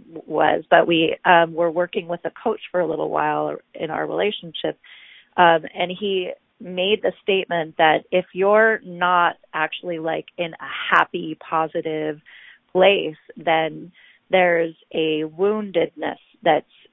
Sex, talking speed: female, 135 wpm